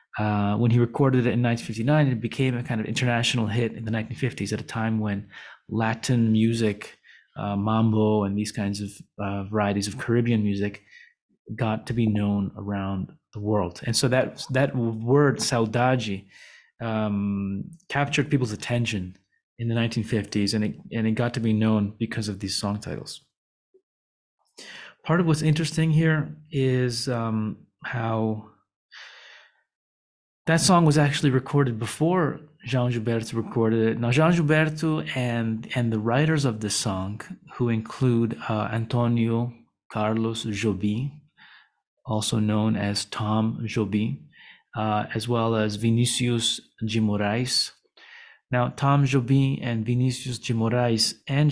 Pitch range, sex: 105-130 Hz, male